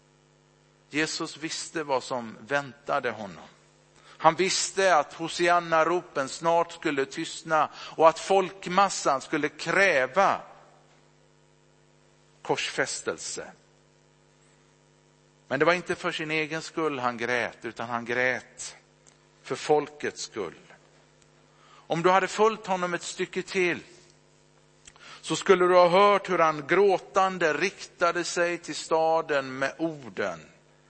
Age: 50-69